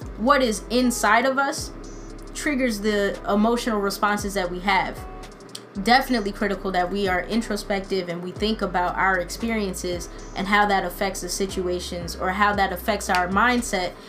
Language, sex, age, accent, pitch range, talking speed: English, female, 20-39, American, 180-210 Hz, 155 wpm